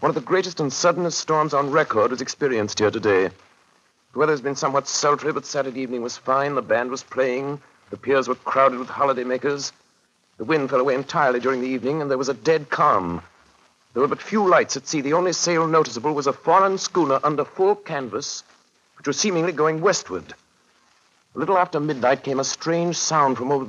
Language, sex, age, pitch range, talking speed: English, male, 60-79, 130-155 Hz, 205 wpm